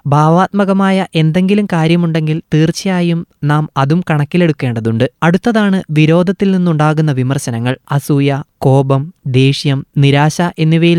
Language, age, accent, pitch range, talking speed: Malayalam, 20-39, native, 150-185 Hz, 85 wpm